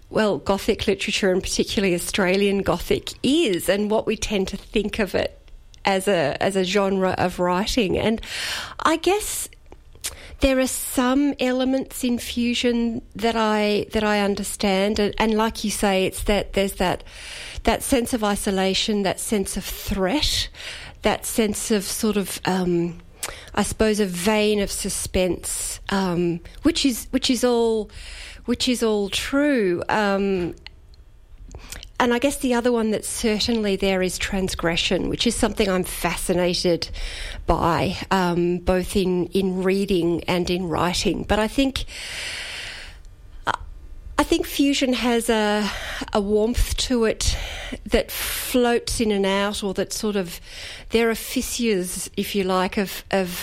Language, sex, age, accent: English, female, 40-59, Australian